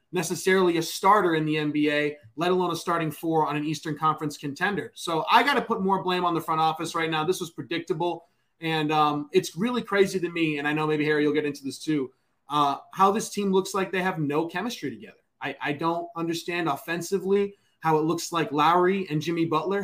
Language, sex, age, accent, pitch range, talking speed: English, male, 20-39, American, 150-185 Hz, 220 wpm